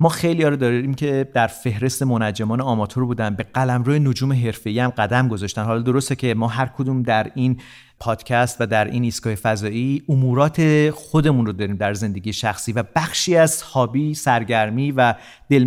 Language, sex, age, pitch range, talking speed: Persian, male, 40-59, 115-140 Hz, 175 wpm